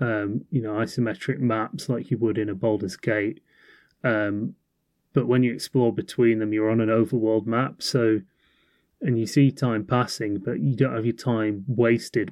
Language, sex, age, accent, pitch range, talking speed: English, male, 30-49, British, 110-130 Hz, 180 wpm